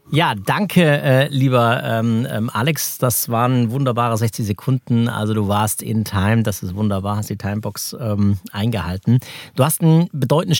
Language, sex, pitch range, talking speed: German, male, 115-130 Hz, 160 wpm